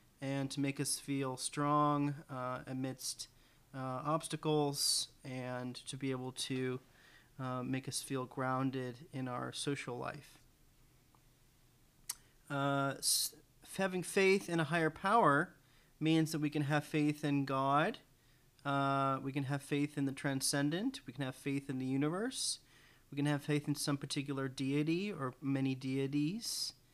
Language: English